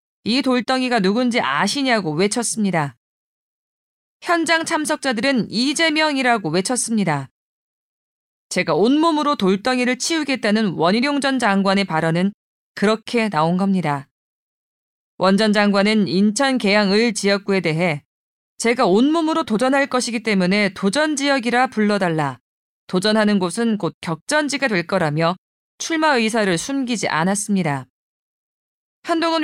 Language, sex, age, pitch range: Korean, female, 20-39, 190-260 Hz